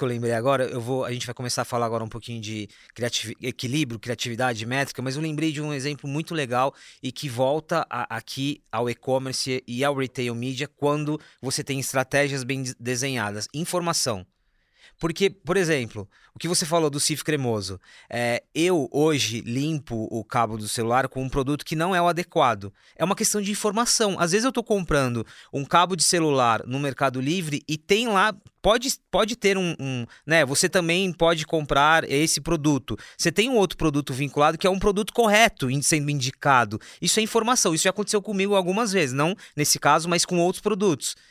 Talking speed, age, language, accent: 185 wpm, 20-39, Portuguese, Brazilian